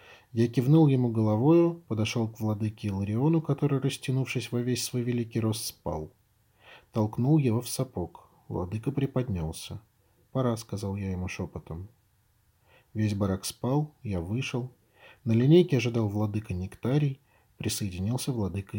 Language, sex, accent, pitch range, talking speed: Russian, male, native, 100-130 Hz, 130 wpm